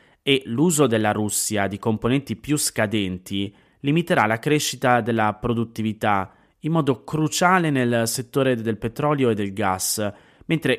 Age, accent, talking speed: 30-49, native, 135 wpm